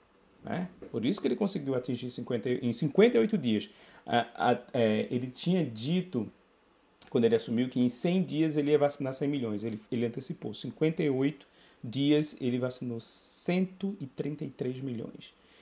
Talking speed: 145 wpm